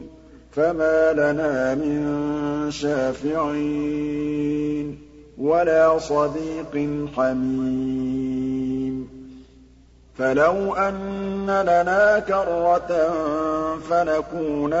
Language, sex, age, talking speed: Arabic, male, 50-69, 50 wpm